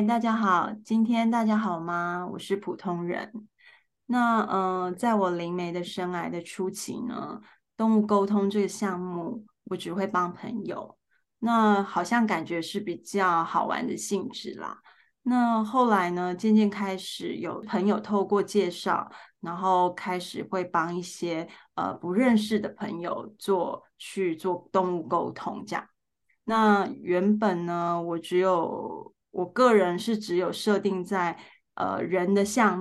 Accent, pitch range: native, 180-220 Hz